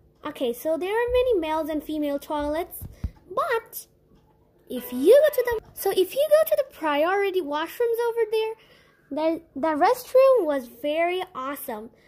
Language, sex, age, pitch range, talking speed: English, female, 20-39, 280-420 Hz, 155 wpm